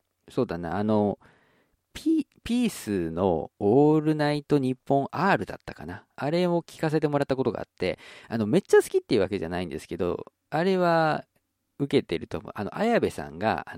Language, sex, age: Japanese, male, 50-69